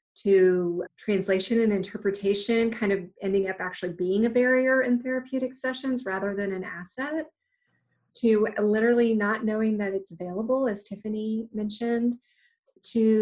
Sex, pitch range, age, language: female, 200-245 Hz, 30-49, English